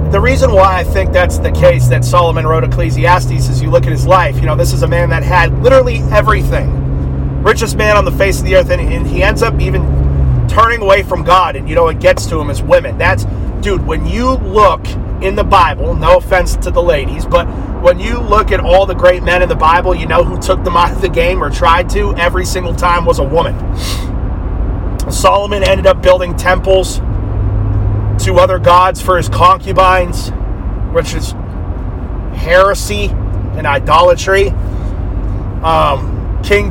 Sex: male